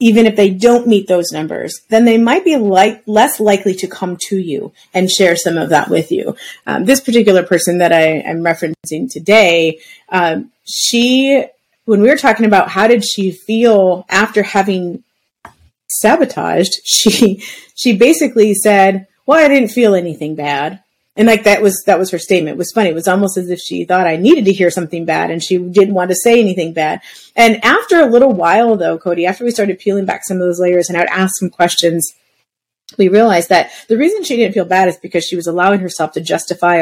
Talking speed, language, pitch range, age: 210 wpm, English, 175-225 Hz, 30-49